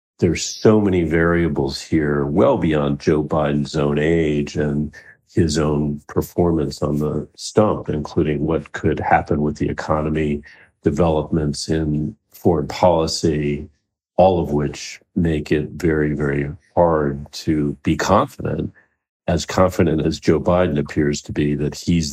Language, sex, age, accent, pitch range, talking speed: English, male, 50-69, American, 75-90 Hz, 135 wpm